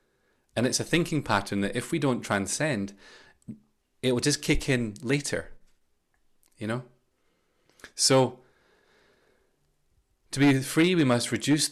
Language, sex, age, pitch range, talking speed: English, male, 30-49, 115-155 Hz, 130 wpm